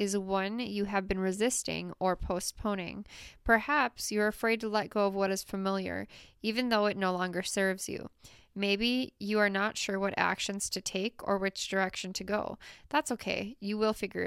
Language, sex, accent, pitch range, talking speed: English, female, American, 195-225 Hz, 185 wpm